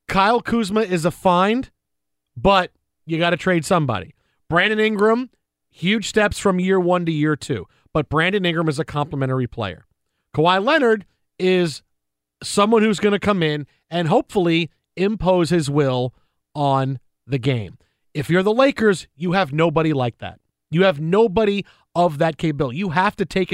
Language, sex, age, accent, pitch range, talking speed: English, male, 40-59, American, 155-205 Hz, 165 wpm